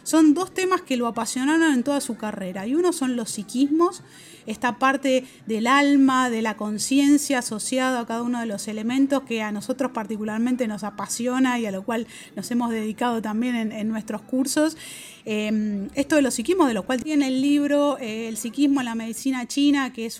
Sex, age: female, 30-49